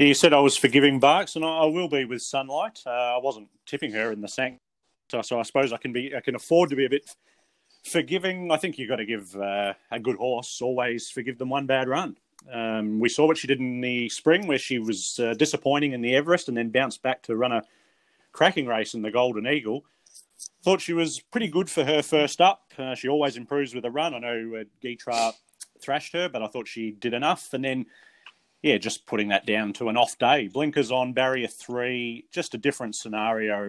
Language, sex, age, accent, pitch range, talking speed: English, male, 30-49, Australian, 120-150 Hz, 225 wpm